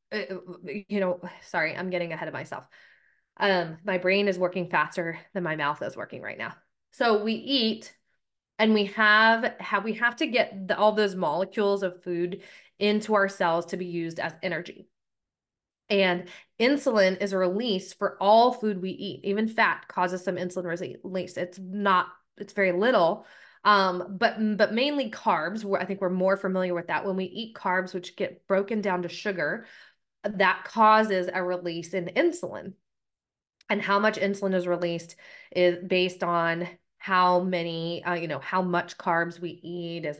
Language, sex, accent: English, female, American